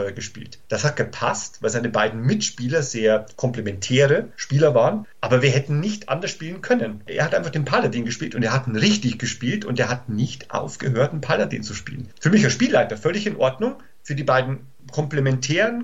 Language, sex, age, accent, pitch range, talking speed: German, male, 40-59, German, 120-150 Hz, 195 wpm